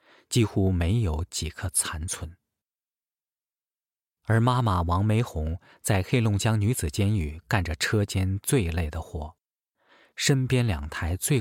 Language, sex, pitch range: Chinese, male, 85-115 Hz